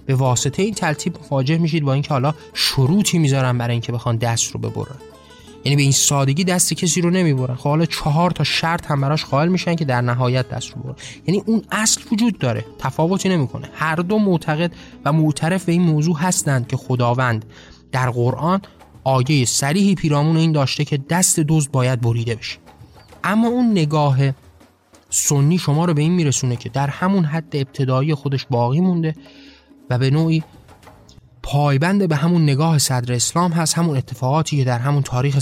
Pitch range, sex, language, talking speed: 130-170 Hz, male, Persian, 180 wpm